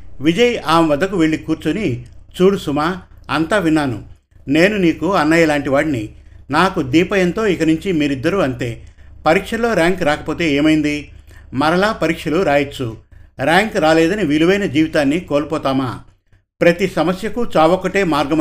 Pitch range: 130-170 Hz